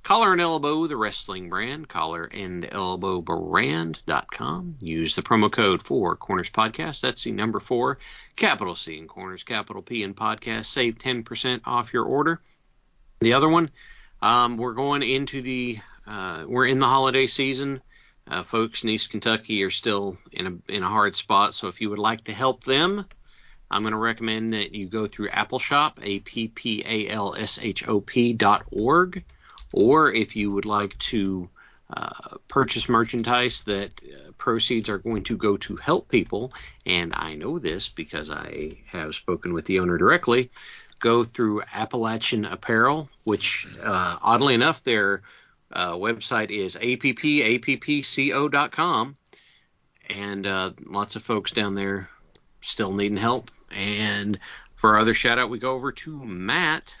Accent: American